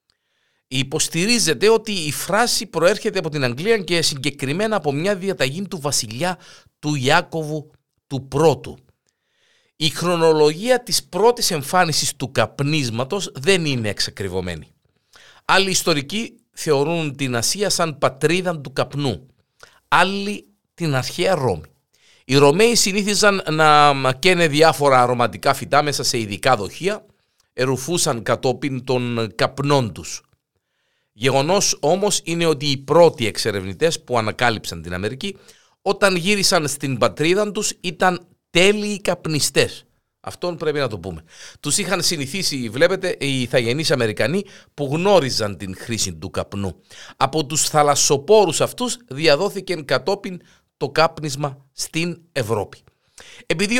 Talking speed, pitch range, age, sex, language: 120 wpm, 130-190 Hz, 50-69, male, Greek